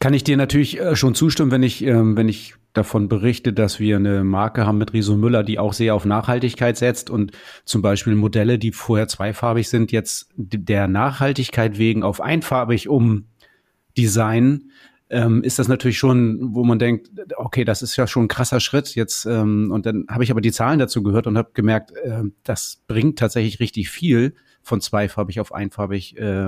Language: German